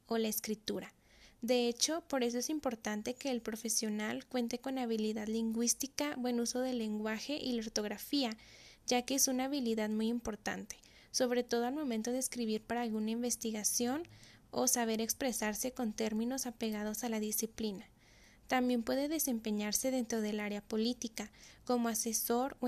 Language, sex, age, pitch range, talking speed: Spanish, female, 10-29, 220-255 Hz, 155 wpm